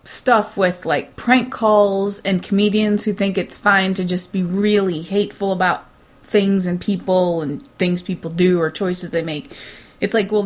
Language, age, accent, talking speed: English, 30-49, American, 180 wpm